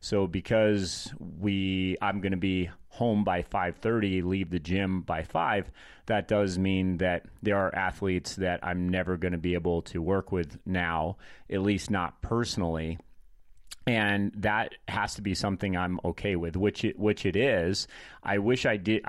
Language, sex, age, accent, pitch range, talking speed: English, male, 30-49, American, 90-105 Hz, 180 wpm